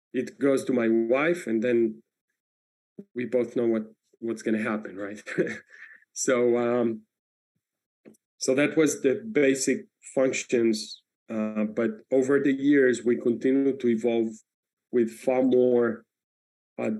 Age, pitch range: 30-49, 110-130 Hz